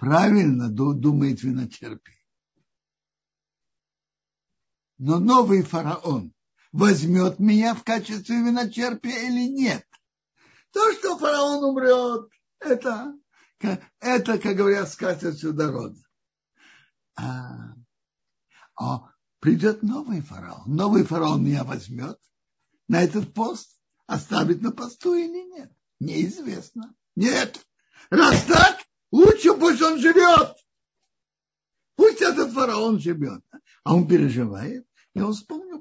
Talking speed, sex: 95 wpm, male